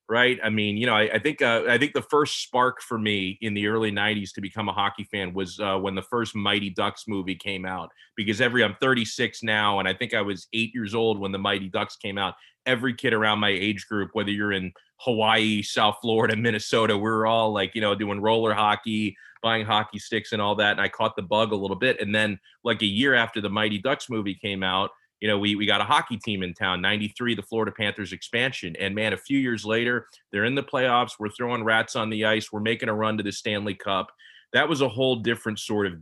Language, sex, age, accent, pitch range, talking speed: English, male, 30-49, American, 100-115 Hz, 245 wpm